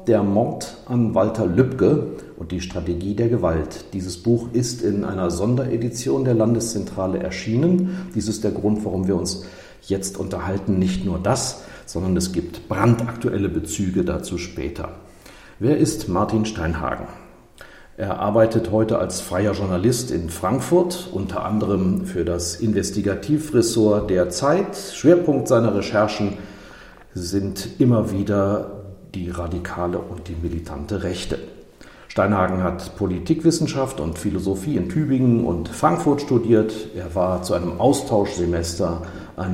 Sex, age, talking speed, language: male, 50-69, 130 wpm, German